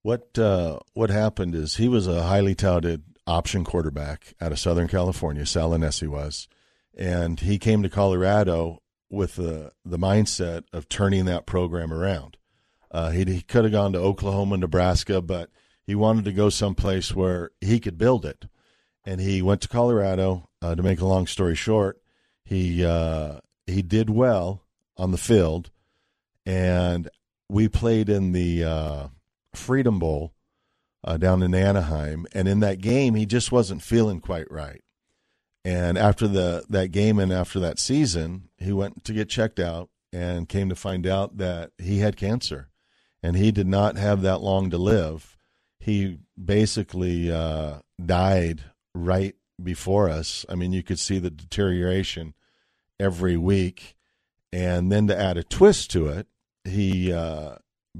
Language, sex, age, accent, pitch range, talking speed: English, male, 50-69, American, 85-100 Hz, 160 wpm